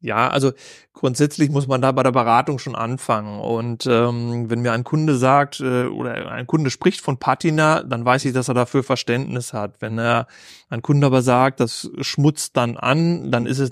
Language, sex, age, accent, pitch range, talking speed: German, male, 30-49, German, 115-135 Hz, 200 wpm